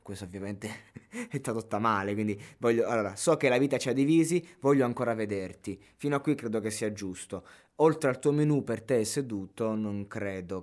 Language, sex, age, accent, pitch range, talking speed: Italian, male, 20-39, native, 100-135 Hz, 190 wpm